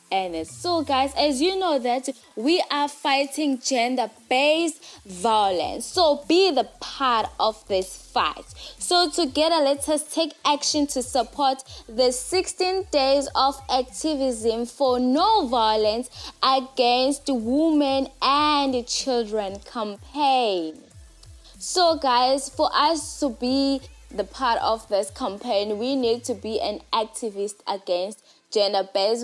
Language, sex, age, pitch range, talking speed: English, female, 20-39, 220-290 Hz, 120 wpm